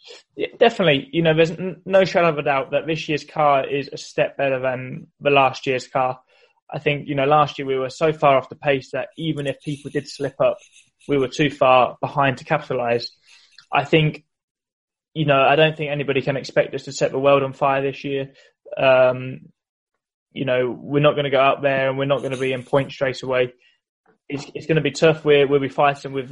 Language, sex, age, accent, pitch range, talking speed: English, male, 20-39, British, 135-155 Hz, 225 wpm